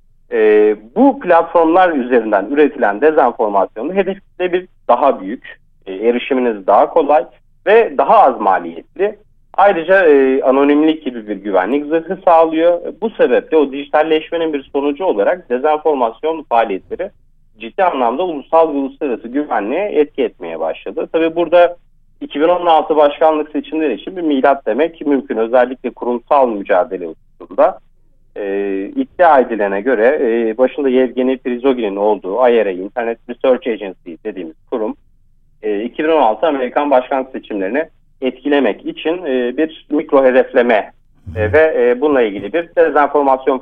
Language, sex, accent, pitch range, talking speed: Turkish, male, native, 125-165 Hz, 125 wpm